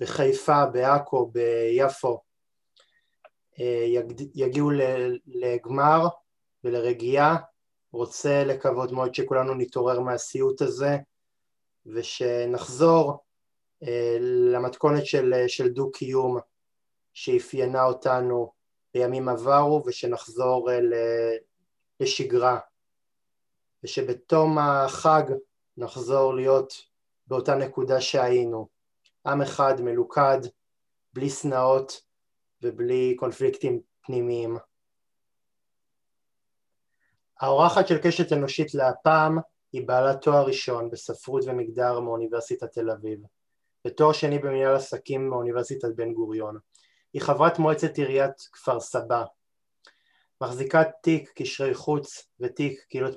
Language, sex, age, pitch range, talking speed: Hebrew, male, 20-39, 125-155 Hz, 80 wpm